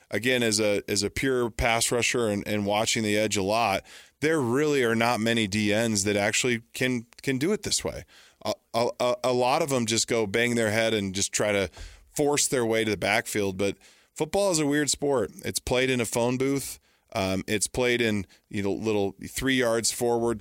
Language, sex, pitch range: English, male, 105-125 Hz